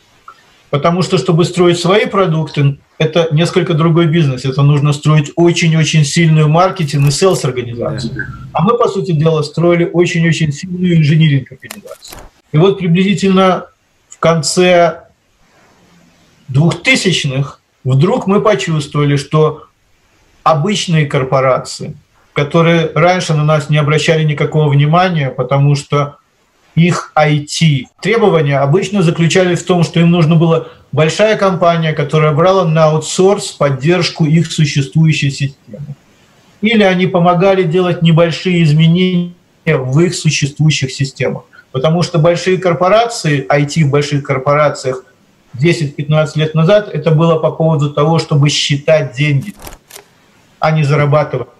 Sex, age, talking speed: male, 40-59, 115 wpm